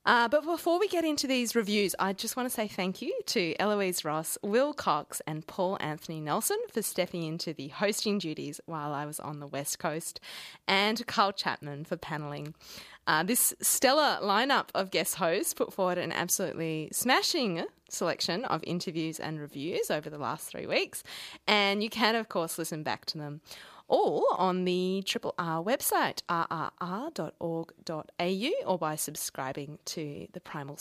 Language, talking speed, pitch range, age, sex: English, 170 wpm, 160-235 Hz, 30-49, female